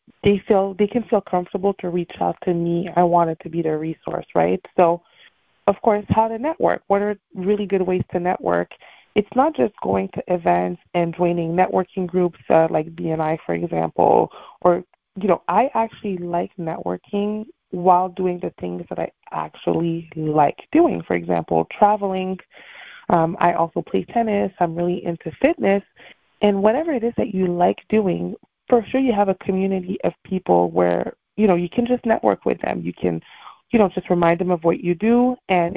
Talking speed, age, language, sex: 190 wpm, 20-39, English, female